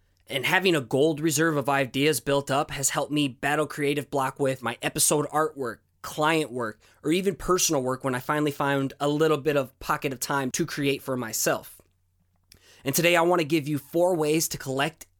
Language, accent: English, American